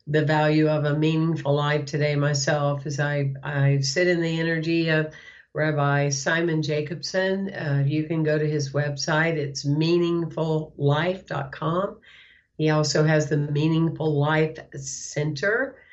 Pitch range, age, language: 140-155 Hz, 50-69, English